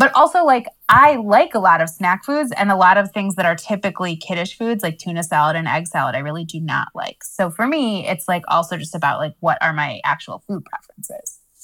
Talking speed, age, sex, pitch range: 235 wpm, 20-39, female, 170-225 Hz